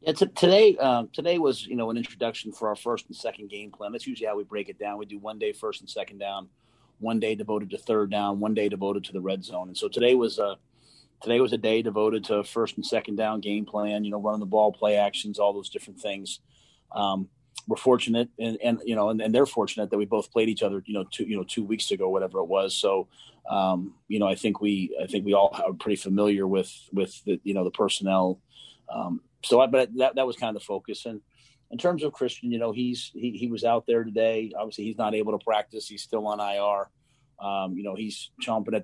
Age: 30-49